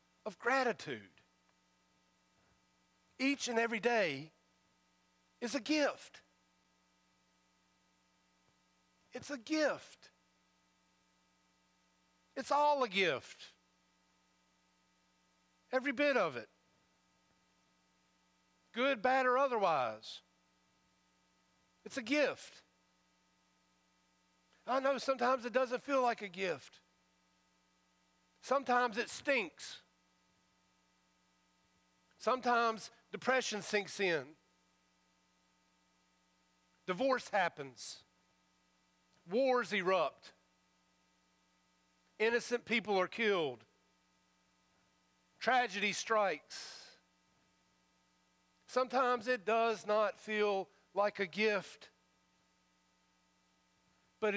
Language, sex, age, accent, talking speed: English, male, 50-69, American, 70 wpm